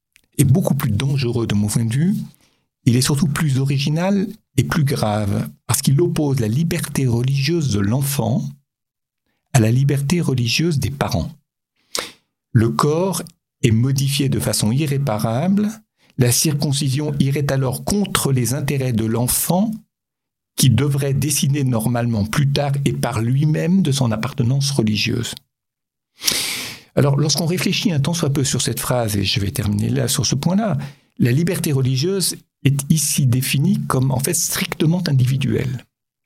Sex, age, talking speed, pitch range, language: male, 60-79, 145 wpm, 120-160 Hz, French